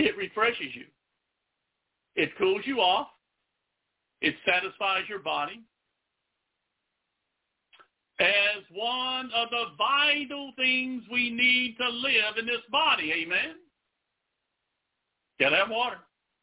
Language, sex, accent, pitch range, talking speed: English, male, American, 245-310 Hz, 100 wpm